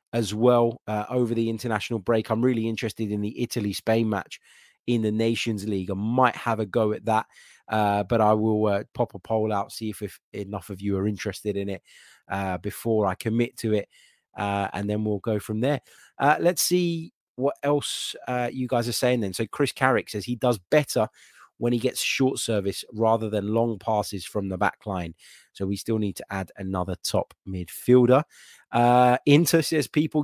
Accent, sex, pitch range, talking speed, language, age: British, male, 105-125 Hz, 200 wpm, English, 20-39